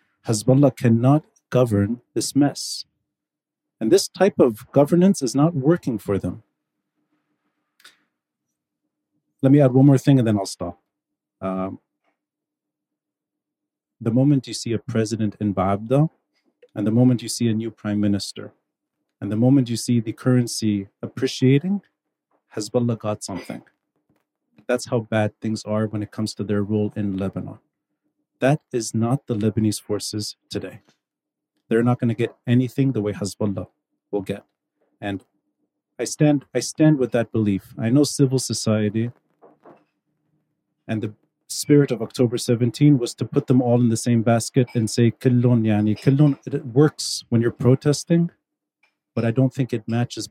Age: 40-59